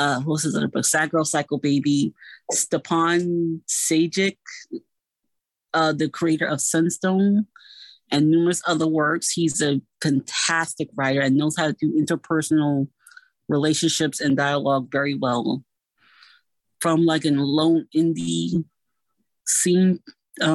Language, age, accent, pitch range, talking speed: English, 30-49, American, 150-170 Hz, 120 wpm